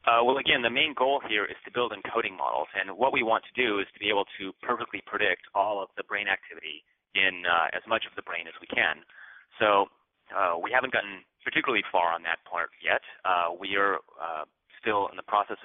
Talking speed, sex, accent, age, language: 225 wpm, male, American, 30-49, English